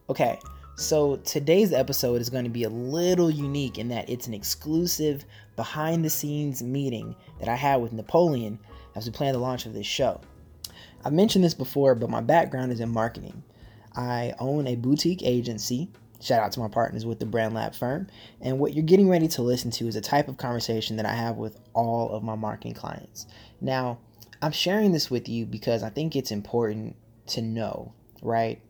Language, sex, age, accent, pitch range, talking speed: English, male, 20-39, American, 110-130 Hz, 190 wpm